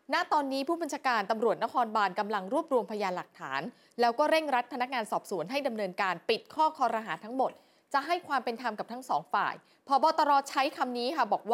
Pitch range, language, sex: 195-275 Hz, Thai, female